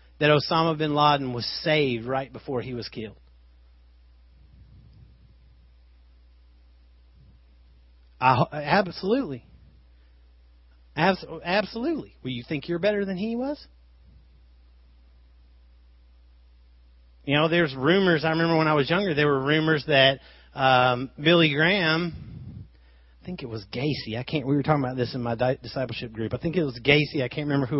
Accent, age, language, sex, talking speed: American, 40-59, English, male, 140 wpm